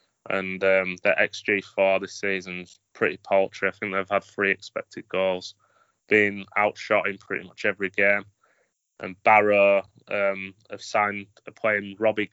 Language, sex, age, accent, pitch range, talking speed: English, male, 20-39, British, 100-110 Hz, 150 wpm